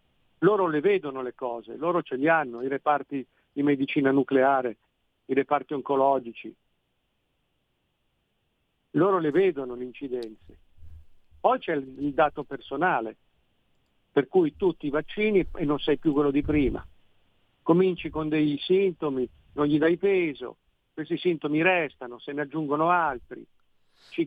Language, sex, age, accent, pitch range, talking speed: Italian, male, 50-69, native, 130-170 Hz, 135 wpm